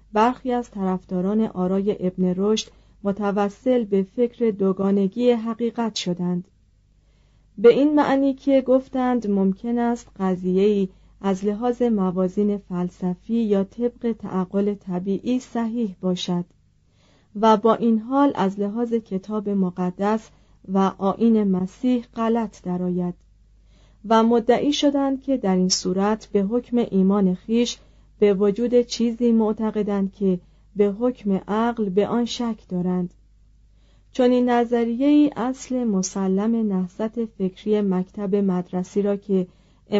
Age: 40-59